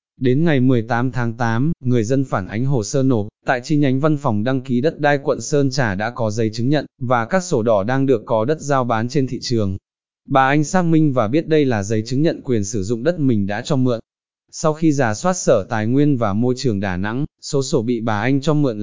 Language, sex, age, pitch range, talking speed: Vietnamese, male, 20-39, 115-145 Hz, 255 wpm